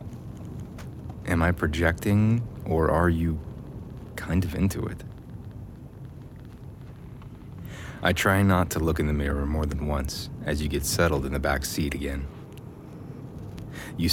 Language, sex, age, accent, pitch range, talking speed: English, male, 30-49, American, 75-115 Hz, 130 wpm